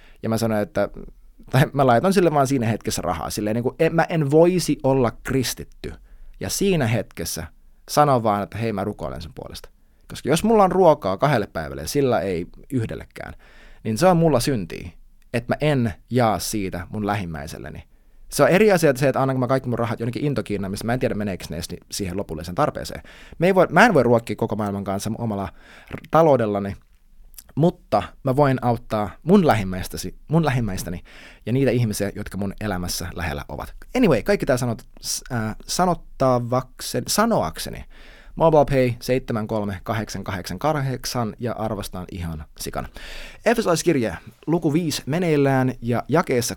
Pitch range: 100-150 Hz